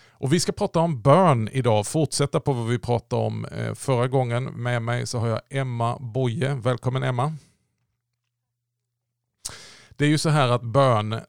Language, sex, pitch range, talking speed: Swedish, male, 110-125 Hz, 165 wpm